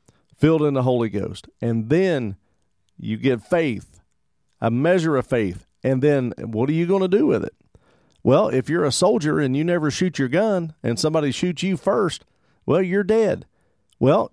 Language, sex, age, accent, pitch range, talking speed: English, male, 50-69, American, 105-145 Hz, 185 wpm